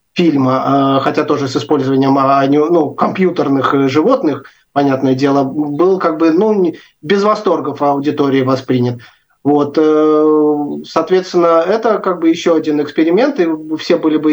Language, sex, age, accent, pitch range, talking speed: Russian, male, 30-49, native, 140-165 Hz, 125 wpm